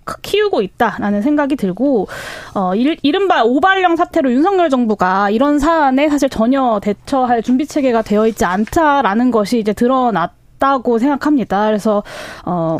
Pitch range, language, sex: 220-295 Hz, Korean, female